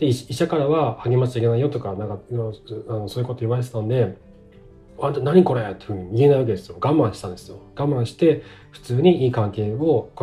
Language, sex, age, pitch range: Japanese, male, 40-59, 110-150 Hz